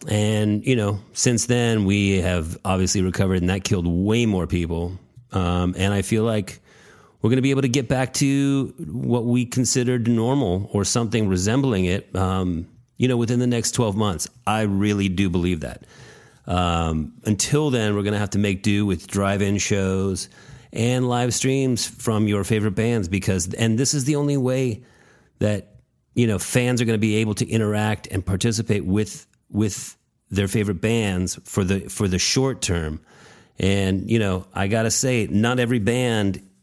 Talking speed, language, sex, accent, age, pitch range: 185 wpm, English, male, American, 40-59, 95-120 Hz